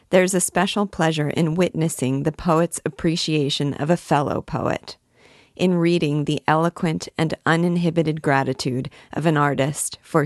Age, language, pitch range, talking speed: 40-59, English, 145-165 Hz, 145 wpm